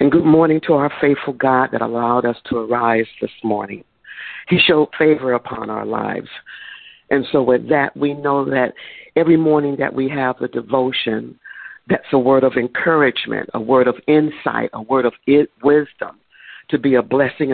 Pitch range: 125-150 Hz